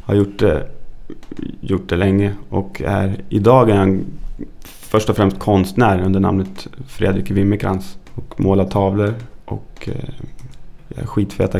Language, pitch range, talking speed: English, 95-105 Hz, 120 wpm